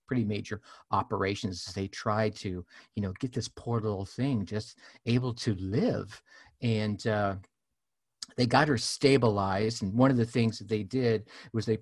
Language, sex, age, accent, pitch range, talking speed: English, male, 50-69, American, 105-130 Hz, 175 wpm